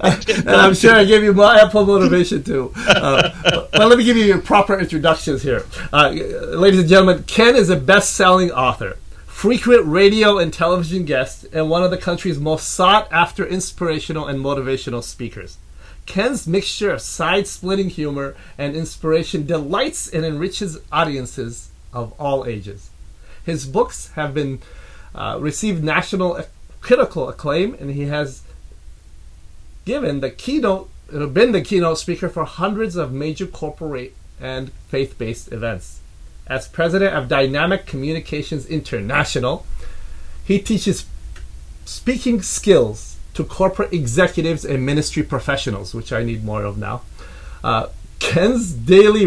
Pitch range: 120-185 Hz